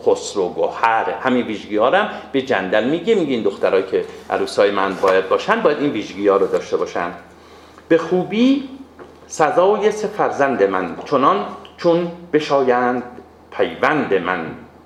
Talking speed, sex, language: 135 wpm, male, Persian